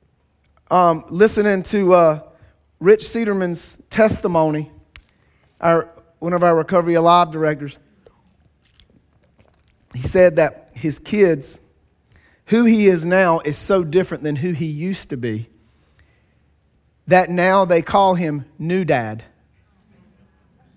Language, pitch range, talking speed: English, 120-180 Hz, 115 wpm